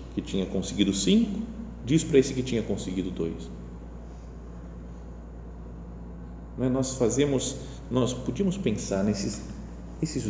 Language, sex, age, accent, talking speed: Portuguese, male, 40-59, Brazilian, 110 wpm